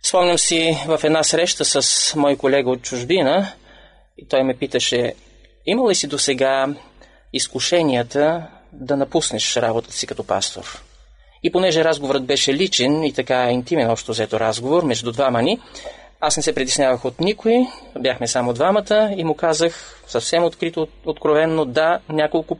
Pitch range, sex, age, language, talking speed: 125-160 Hz, male, 20-39, Bulgarian, 150 wpm